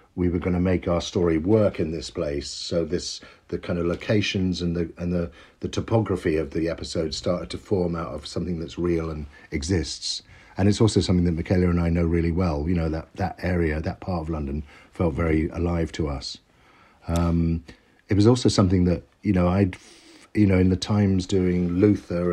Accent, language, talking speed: British, English, 210 wpm